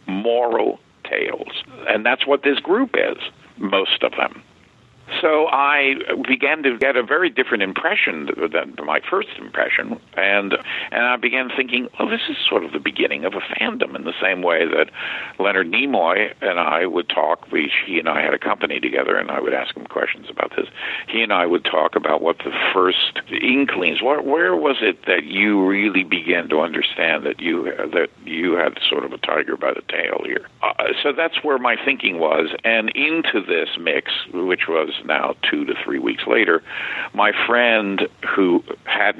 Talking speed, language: 185 wpm, English